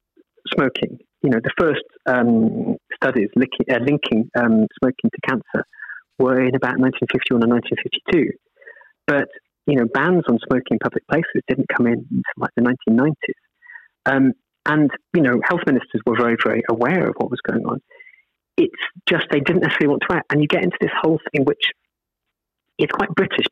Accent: British